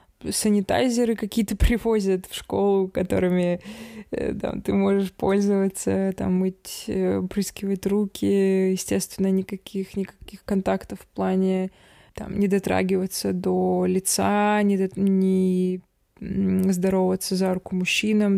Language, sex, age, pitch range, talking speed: Russian, female, 20-39, 190-215 Hz, 100 wpm